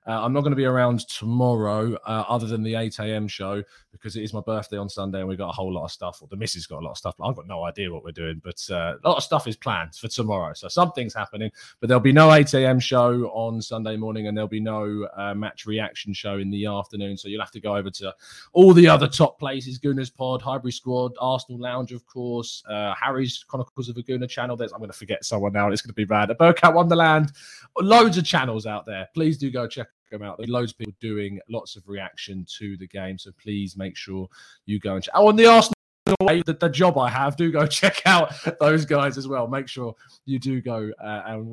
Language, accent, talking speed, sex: English, British, 250 wpm, male